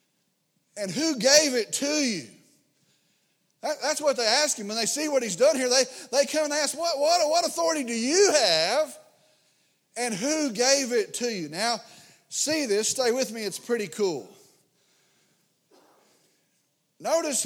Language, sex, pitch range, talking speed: English, male, 220-300 Hz, 155 wpm